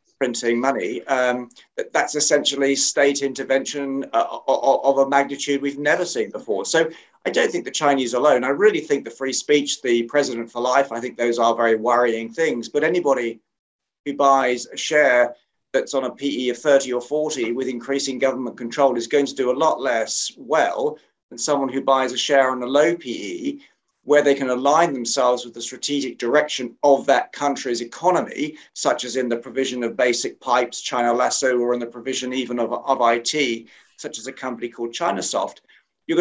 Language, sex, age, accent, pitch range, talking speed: English, male, 40-59, British, 120-145 Hz, 185 wpm